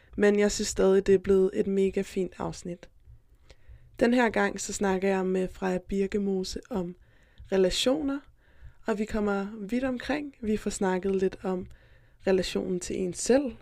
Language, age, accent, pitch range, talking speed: Danish, 20-39, native, 190-215 Hz, 160 wpm